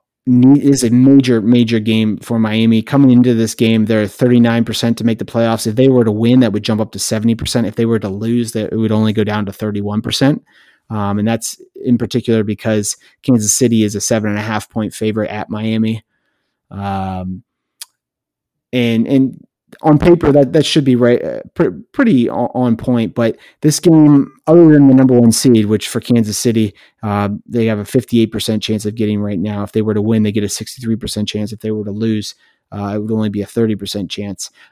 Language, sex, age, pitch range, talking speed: English, male, 30-49, 110-125 Hz, 205 wpm